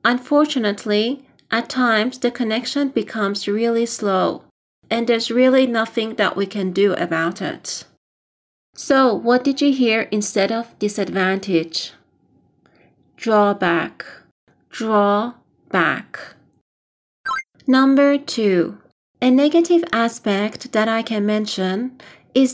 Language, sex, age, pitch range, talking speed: Persian, female, 40-59, 200-255 Hz, 105 wpm